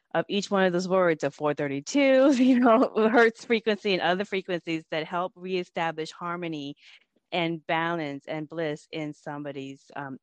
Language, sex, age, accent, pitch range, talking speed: English, female, 20-39, American, 150-185 Hz, 155 wpm